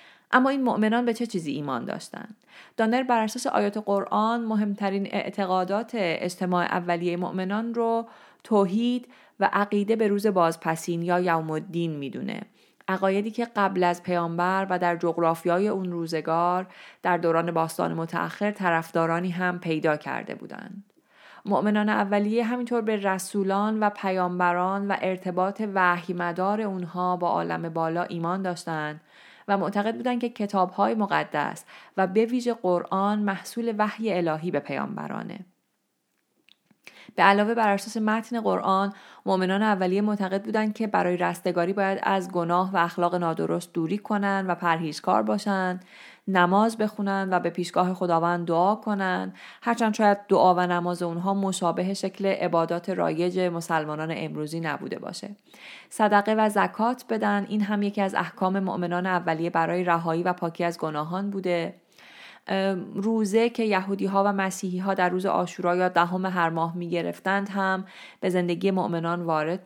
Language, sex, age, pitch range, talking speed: Persian, female, 30-49, 175-210 Hz, 140 wpm